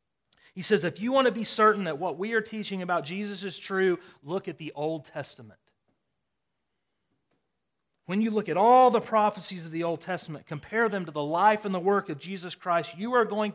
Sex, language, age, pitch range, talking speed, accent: male, English, 30-49, 150-195 Hz, 210 wpm, American